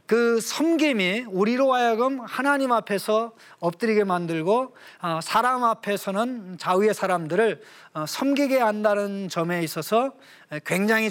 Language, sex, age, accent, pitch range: Korean, male, 40-59, native, 190-255 Hz